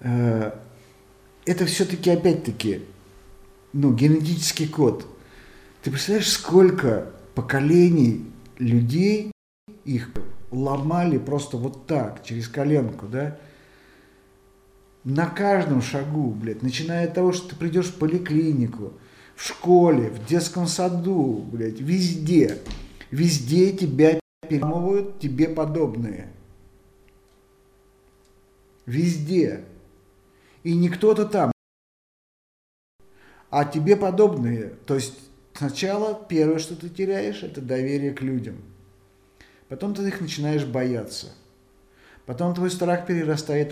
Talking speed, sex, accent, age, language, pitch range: 95 wpm, male, native, 50-69, Russian, 110-165 Hz